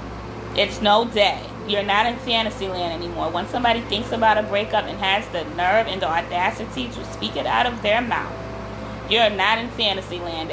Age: 30-49